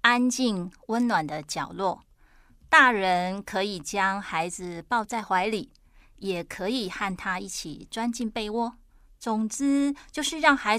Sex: female